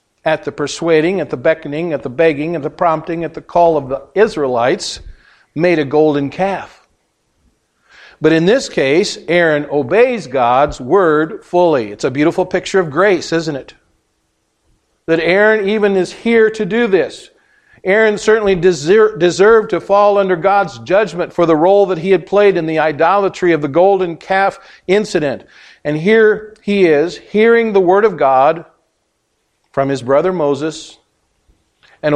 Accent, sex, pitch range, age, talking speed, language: American, male, 145-190 Hz, 50-69, 155 wpm, English